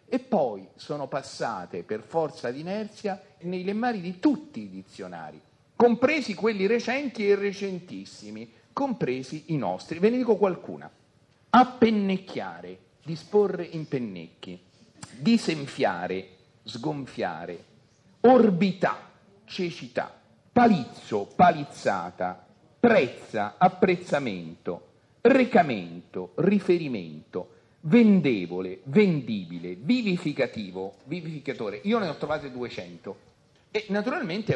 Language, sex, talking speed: Italian, male, 85 wpm